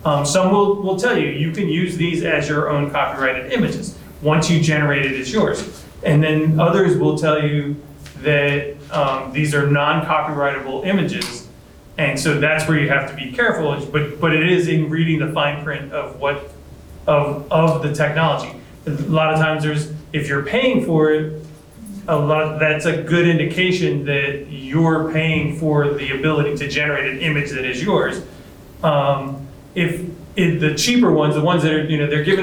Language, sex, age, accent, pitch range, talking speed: English, male, 30-49, American, 145-165 Hz, 185 wpm